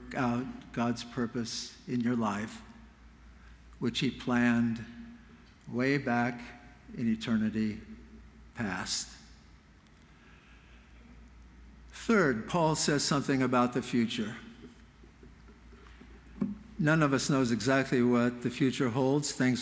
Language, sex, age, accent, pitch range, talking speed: English, male, 60-79, American, 110-140 Hz, 95 wpm